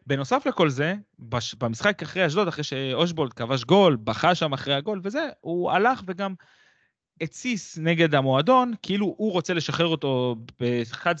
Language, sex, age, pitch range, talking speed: Hebrew, male, 20-39, 120-165 Hz, 150 wpm